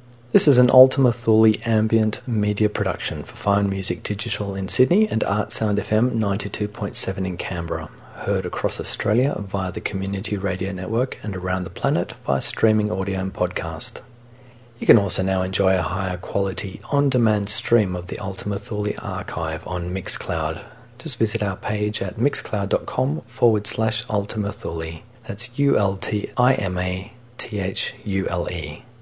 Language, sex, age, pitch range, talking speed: English, male, 40-59, 95-115 Hz, 135 wpm